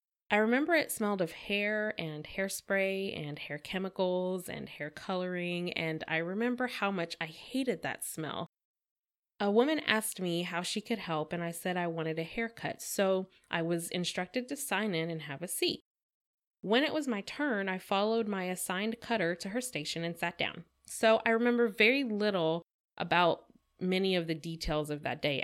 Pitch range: 165-205 Hz